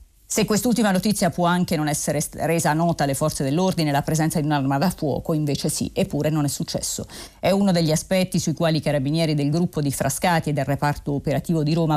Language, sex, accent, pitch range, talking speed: Italian, female, native, 145-175 Hz, 210 wpm